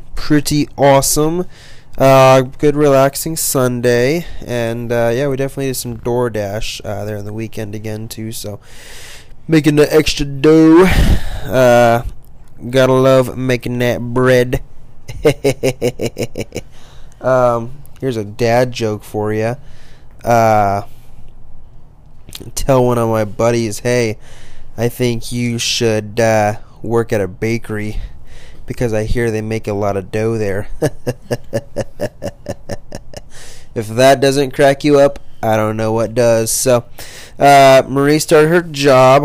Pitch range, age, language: 115-135 Hz, 20-39, English